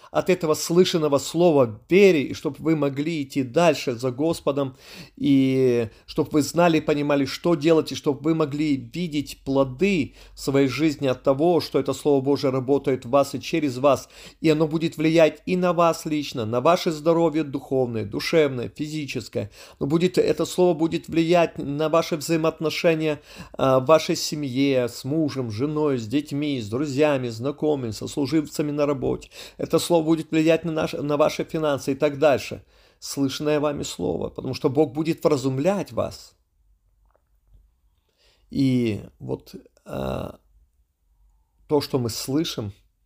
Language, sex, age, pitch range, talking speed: Russian, male, 30-49, 125-160 Hz, 150 wpm